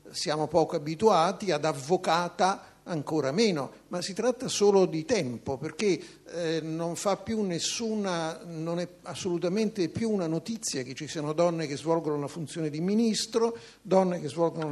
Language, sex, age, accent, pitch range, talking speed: Italian, male, 50-69, native, 150-190 Hz, 155 wpm